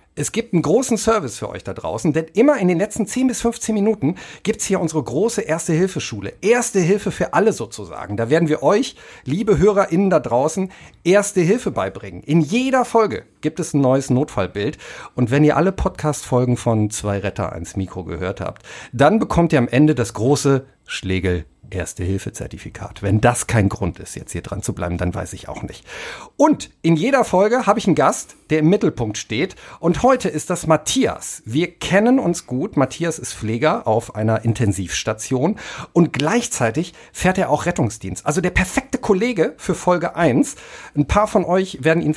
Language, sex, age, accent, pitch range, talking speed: German, male, 50-69, German, 110-180 Hz, 190 wpm